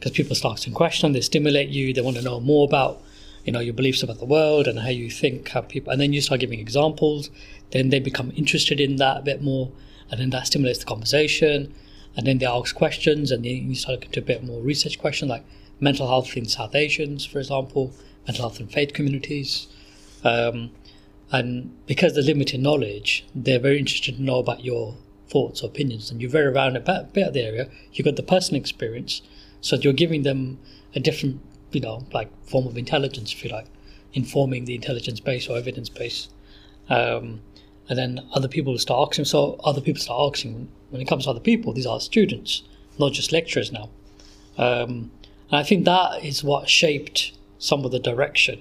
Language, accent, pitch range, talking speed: English, British, 115-145 Hz, 205 wpm